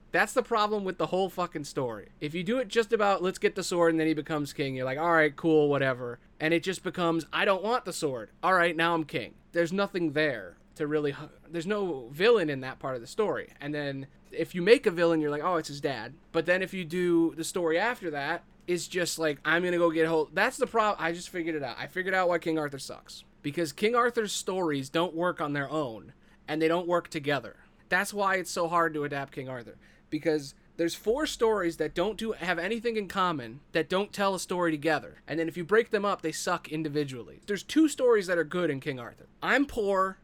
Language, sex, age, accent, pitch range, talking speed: English, male, 20-39, American, 155-195 Hz, 245 wpm